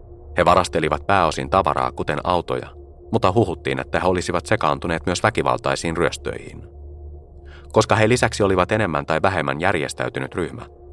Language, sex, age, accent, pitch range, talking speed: Finnish, male, 30-49, native, 70-95 Hz, 130 wpm